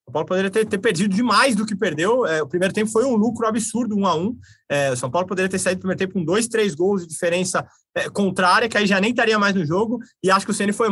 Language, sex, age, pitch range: Portuguese, male, 20-39, 180-220 Hz